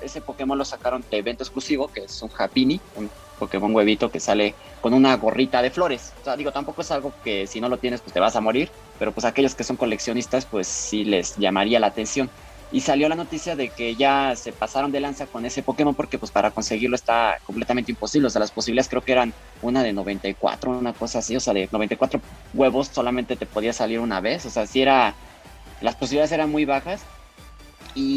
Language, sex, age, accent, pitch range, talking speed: Spanish, male, 30-49, Mexican, 110-135 Hz, 225 wpm